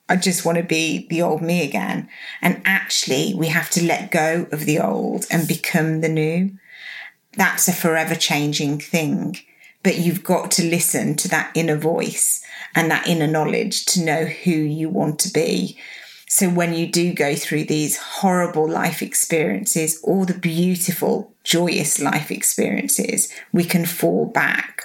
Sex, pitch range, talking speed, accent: female, 160-185 Hz, 165 wpm, British